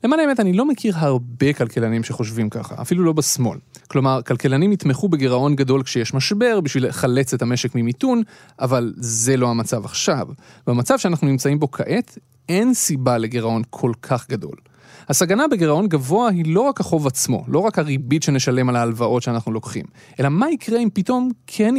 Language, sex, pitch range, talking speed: Hebrew, male, 125-185 Hz, 170 wpm